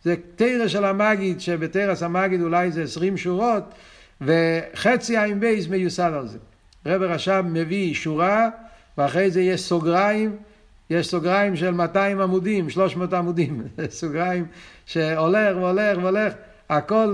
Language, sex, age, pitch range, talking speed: Hebrew, male, 60-79, 160-200 Hz, 125 wpm